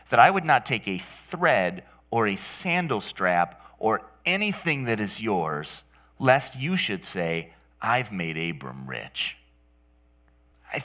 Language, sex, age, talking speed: English, male, 30-49, 140 wpm